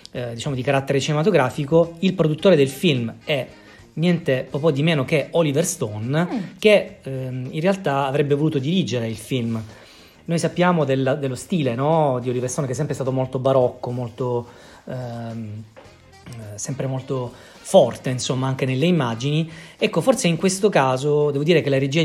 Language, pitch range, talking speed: Italian, 125-155 Hz, 165 wpm